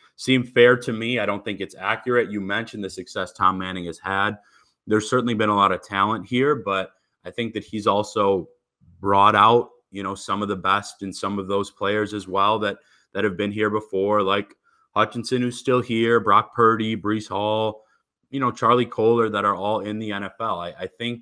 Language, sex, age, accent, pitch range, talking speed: English, male, 20-39, American, 100-120 Hz, 210 wpm